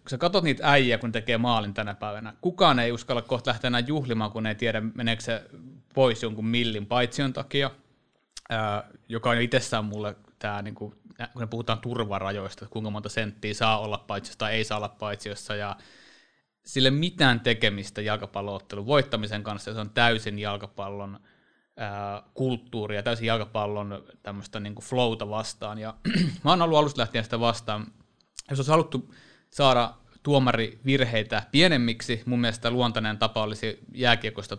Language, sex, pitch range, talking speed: Finnish, male, 105-125 Hz, 155 wpm